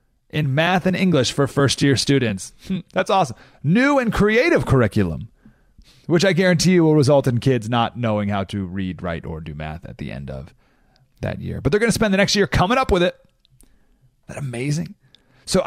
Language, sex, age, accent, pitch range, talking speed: English, male, 30-49, American, 115-185 Hz, 205 wpm